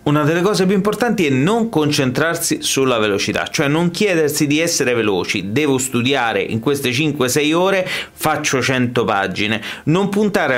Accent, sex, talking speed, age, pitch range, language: native, male, 155 wpm, 30-49, 115-160 Hz, Italian